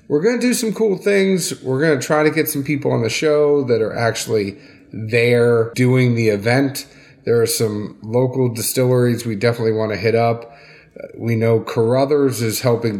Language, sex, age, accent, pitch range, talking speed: English, male, 30-49, American, 115-135 Hz, 190 wpm